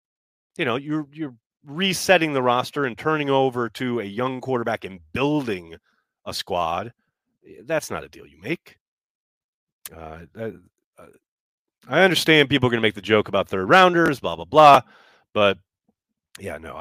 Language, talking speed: English, 160 wpm